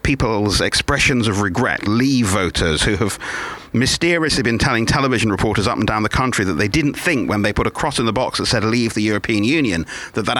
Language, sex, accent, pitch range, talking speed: English, male, British, 110-150 Hz, 220 wpm